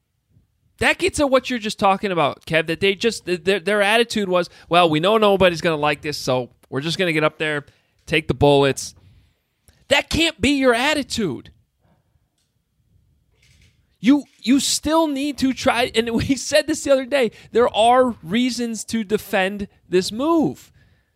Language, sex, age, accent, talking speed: English, male, 30-49, American, 165 wpm